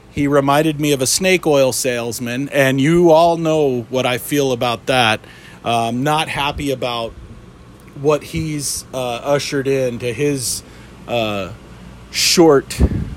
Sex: male